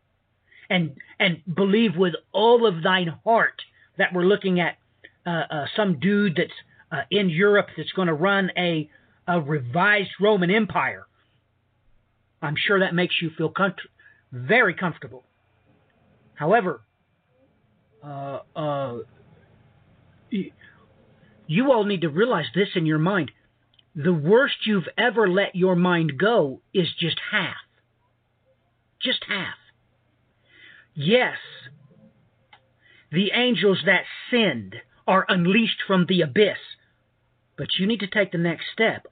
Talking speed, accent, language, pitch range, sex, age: 125 wpm, American, English, 120-190 Hz, male, 50-69